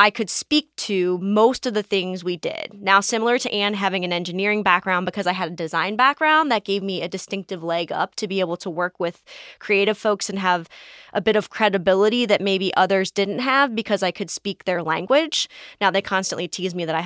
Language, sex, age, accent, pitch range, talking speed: English, female, 20-39, American, 185-225 Hz, 220 wpm